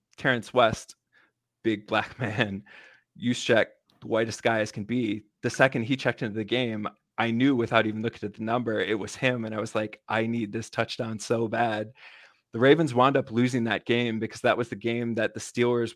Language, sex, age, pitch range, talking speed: English, male, 20-39, 110-120 Hz, 205 wpm